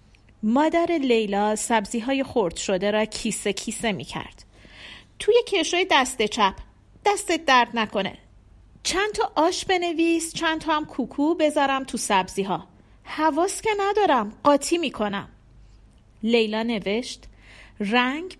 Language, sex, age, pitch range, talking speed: Persian, female, 40-59, 200-305 Hz, 125 wpm